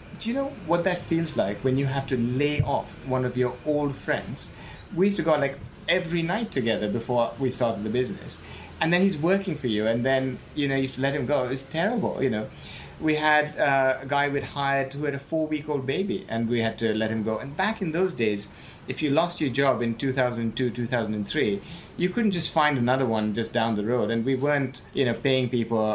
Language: English